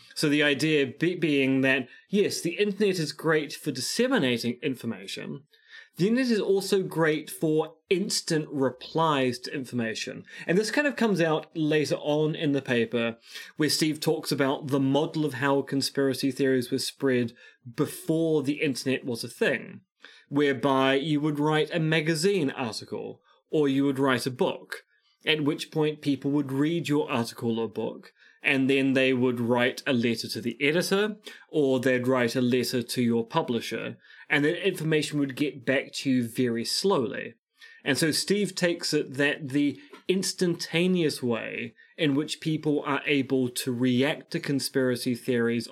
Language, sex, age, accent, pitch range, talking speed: English, male, 20-39, British, 130-160 Hz, 160 wpm